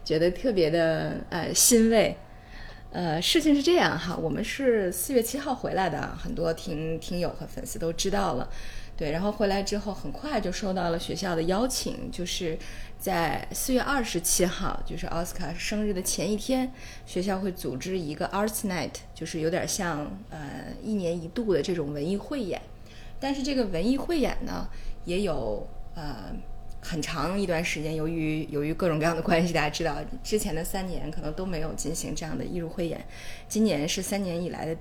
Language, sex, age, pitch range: Chinese, female, 20-39, 155-210 Hz